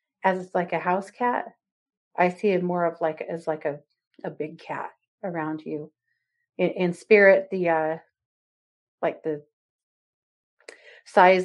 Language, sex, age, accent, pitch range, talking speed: English, female, 40-59, American, 165-235 Hz, 145 wpm